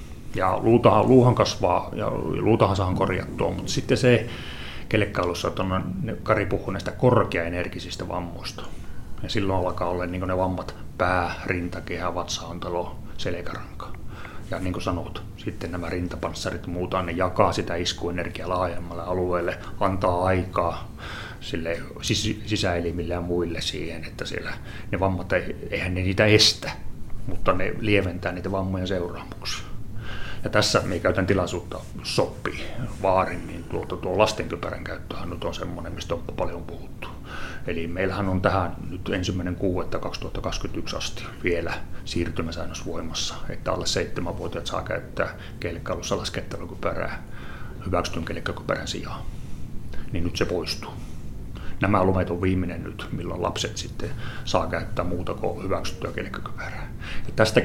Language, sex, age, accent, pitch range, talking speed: Finnish, male, 30-49, native, 85-110 Hz, 125 wpm